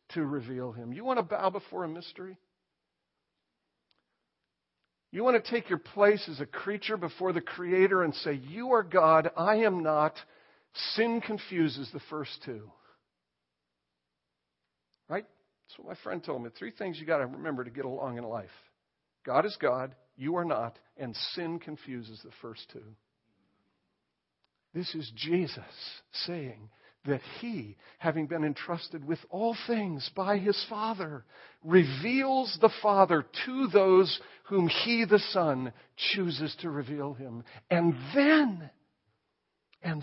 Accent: American